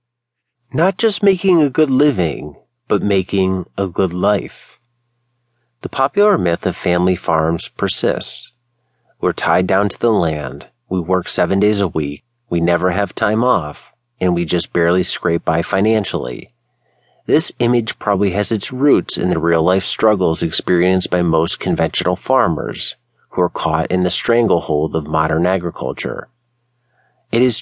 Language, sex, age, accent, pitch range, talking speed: English, male, 40-59, American, 90-120 Hz, 150 wpm